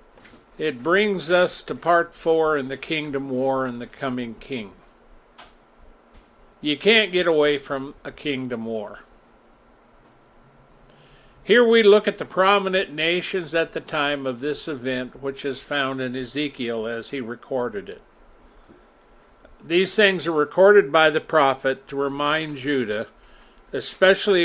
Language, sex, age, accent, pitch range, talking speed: English, male, 50-69, American, 135-170 Hz, 135 wpm